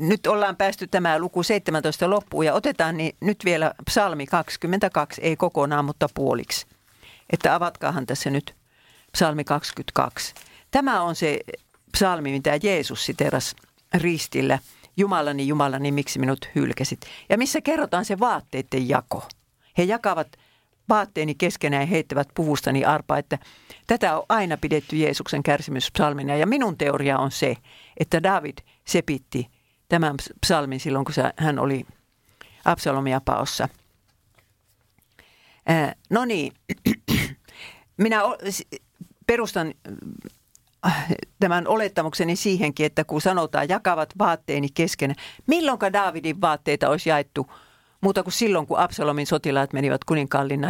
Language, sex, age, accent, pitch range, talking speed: Finnish, female, 50-69, native, 140-185 Hz, 120 wpm